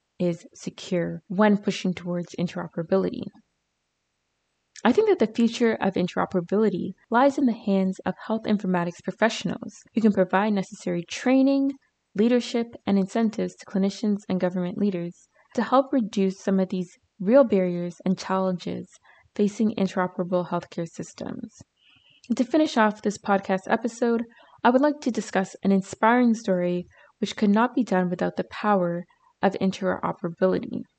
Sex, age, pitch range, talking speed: female, 20-39, 185-235 Hz, 140 wpm